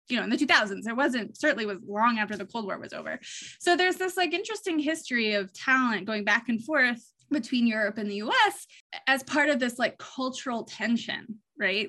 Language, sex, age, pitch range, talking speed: English, female, 20-39, 215-270 Hz, 200 wpm